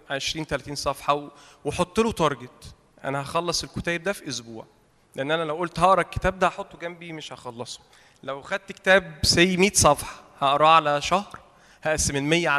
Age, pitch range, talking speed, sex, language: 20-39, 135-175 Hz, 165 wpm, male, Arabic